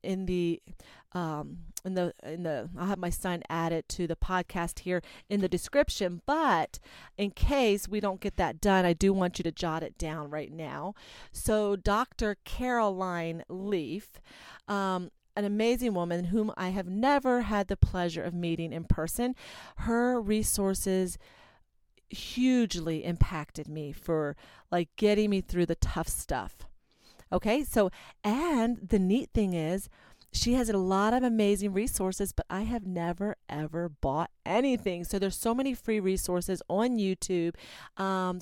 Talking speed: 155 wpm